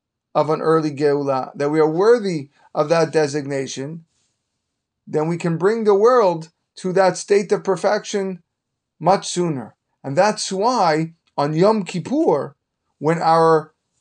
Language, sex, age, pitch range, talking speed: English, male, 30-49, 145-185 Hz, 135 wpm